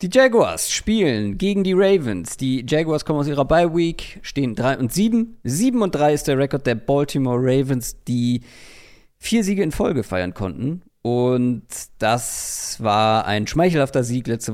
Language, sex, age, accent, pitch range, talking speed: German, male, 40-59, German, 110-145 Hz, 160 wpm